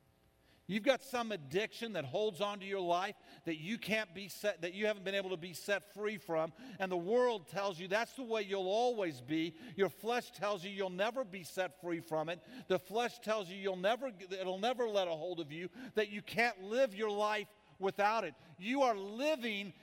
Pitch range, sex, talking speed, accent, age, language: 180-235 Hz, male, 215 wpm, American, 50-69, English